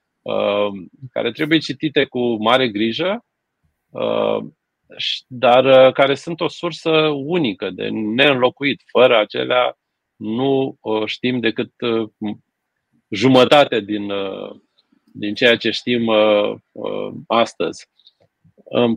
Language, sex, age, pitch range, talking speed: Romanian, male, 30-49, 110-145 Hz, 85 wpm